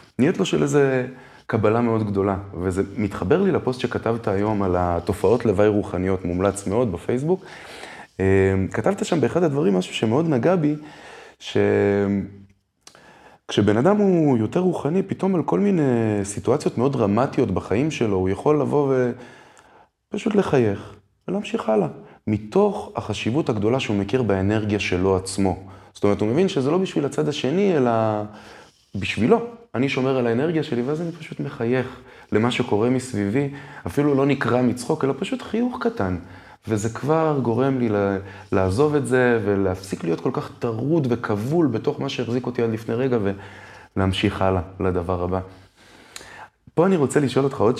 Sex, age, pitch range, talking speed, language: male, 20-39, 95-140 Hz, 150 wpm, Hebrew